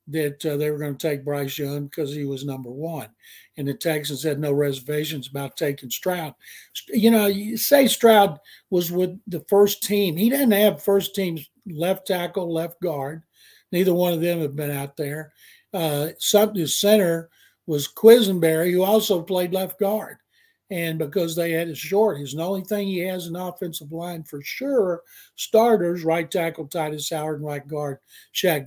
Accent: American